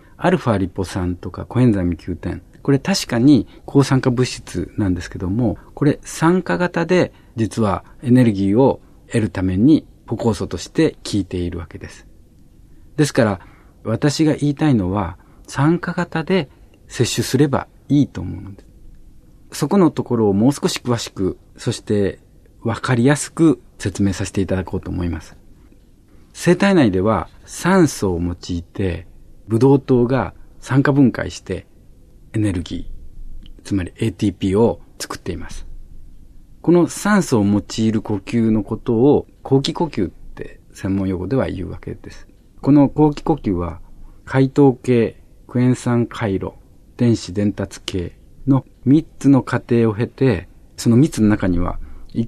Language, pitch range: Japanese, 95-135 Hz